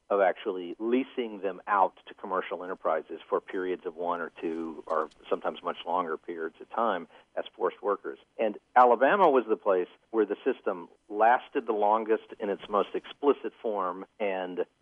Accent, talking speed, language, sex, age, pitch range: American, 165 wpm, English, male, 50-69, 90-140 Hz